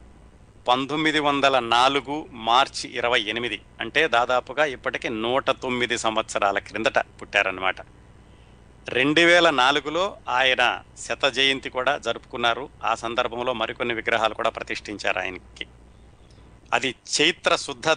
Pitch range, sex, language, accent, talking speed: 115-155 Hz, male, Telugu, native, 105 wpm